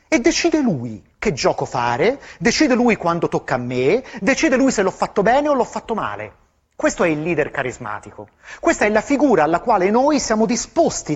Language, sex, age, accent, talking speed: Italian, male, 30-49, native, 195 wpm